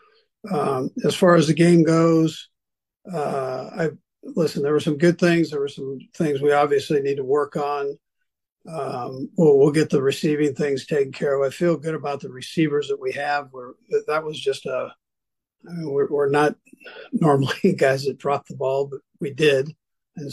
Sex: male